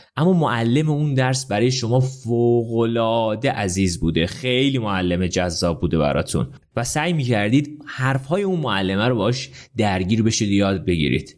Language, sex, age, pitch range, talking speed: Persian, male, 30-49, 100-155 Hz, 150 wpm